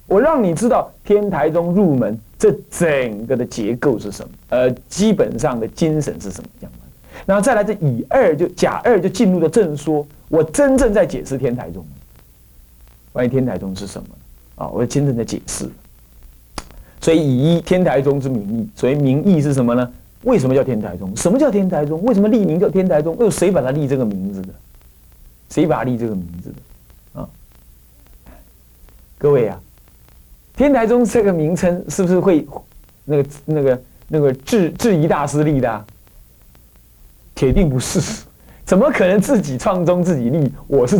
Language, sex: Chinese, male